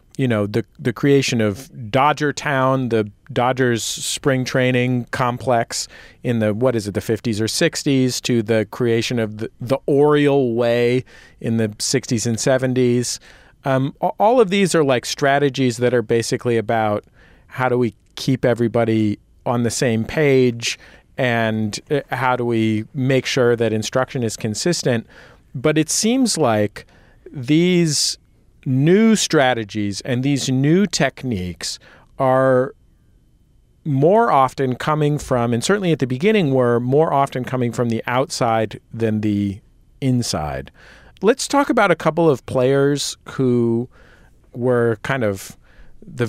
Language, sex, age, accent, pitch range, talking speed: English, male, 40-59, American, 115-140 Hz, 140 wpm